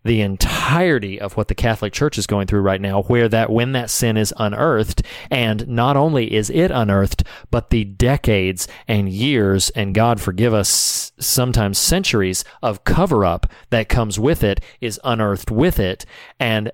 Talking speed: 170 wpm